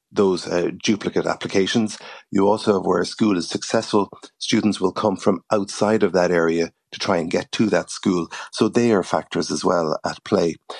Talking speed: 195 wpm